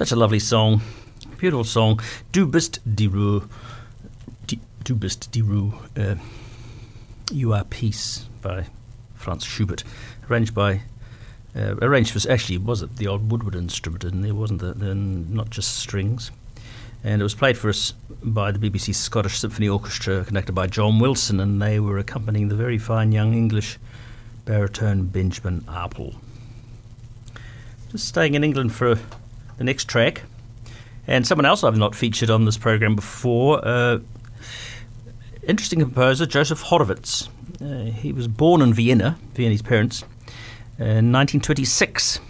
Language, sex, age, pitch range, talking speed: English, male, 50-69, 110-120 Hz, 145 wpm